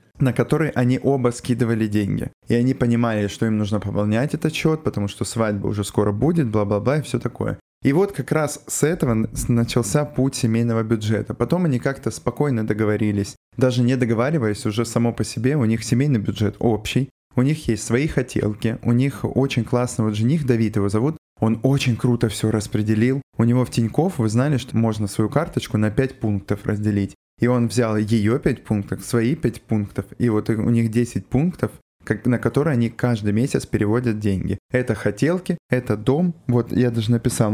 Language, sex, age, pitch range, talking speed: Russian, male, 20-39, 110-130 Hz, 185 wpm